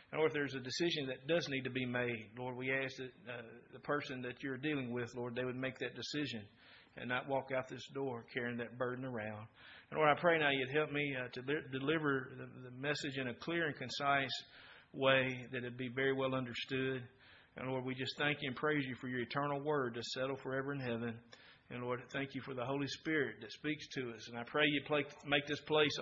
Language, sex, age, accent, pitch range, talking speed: English, male, 50-69, American, 125-155 Hz, 240 wpm